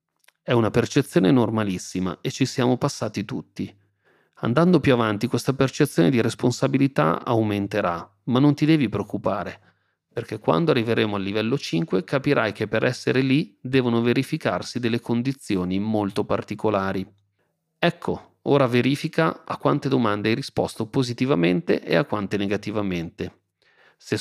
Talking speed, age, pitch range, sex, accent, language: 130 wpm, 40-59, 100-135 Hz, male, native, Italian